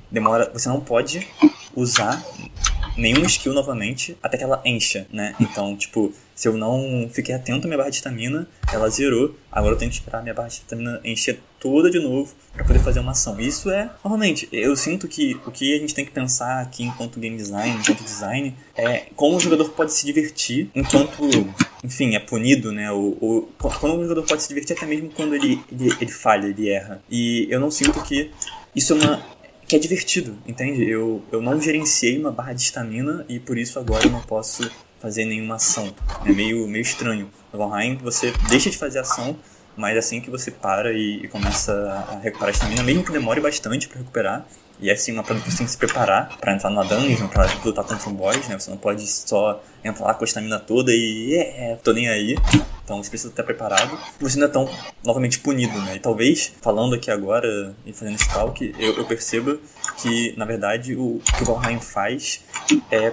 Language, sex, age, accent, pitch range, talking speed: Portuguese, male, 20-39, Brazilian, 110-140 Hz, 210 wpm